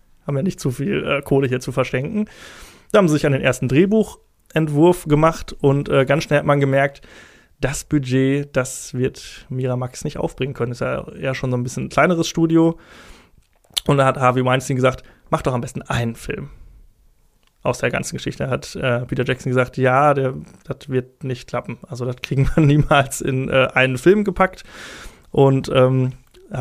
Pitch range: 125-145 Hz